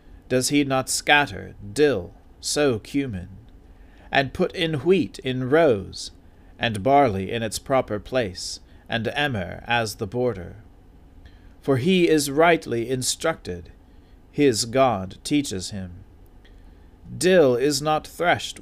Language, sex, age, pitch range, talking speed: English, male, 40-59, 90-135 Hz, 120 wpm